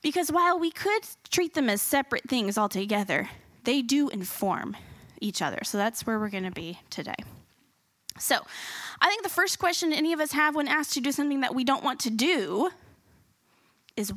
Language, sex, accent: English, female, American